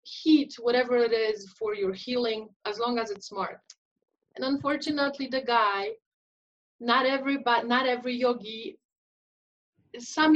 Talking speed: 125 wpm